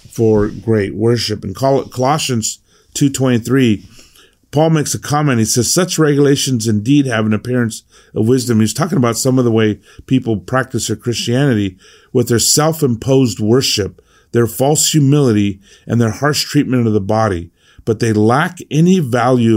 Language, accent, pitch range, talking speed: English, American, 105-140 Hz, 165 wpm